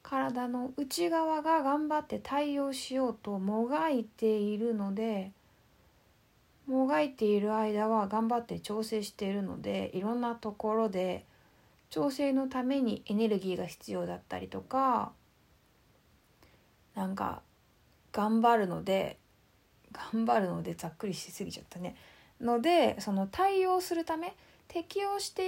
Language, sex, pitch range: Japanese, female, 190-275 Hz